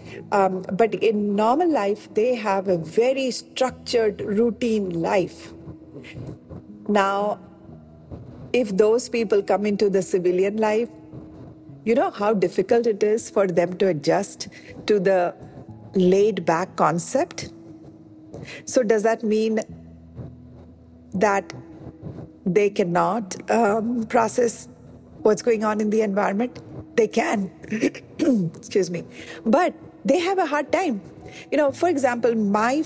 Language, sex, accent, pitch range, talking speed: Hindi, female, native, 190-235 Hz, 120 wpm